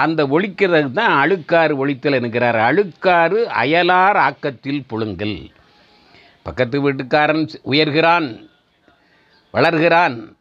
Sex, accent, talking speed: male, native, 80 wpm